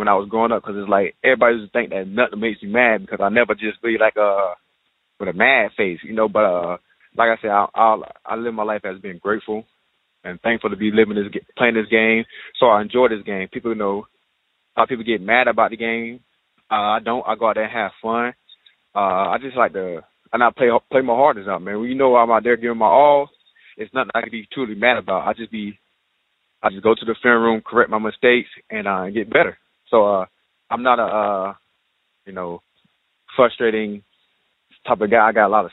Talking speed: 240 wpm